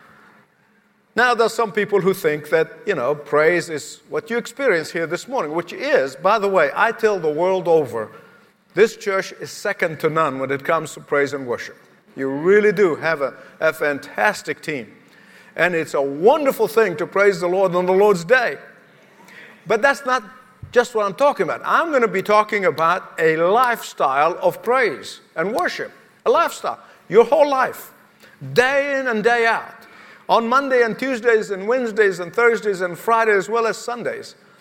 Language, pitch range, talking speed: English, 180-250 Hz, 185 wpm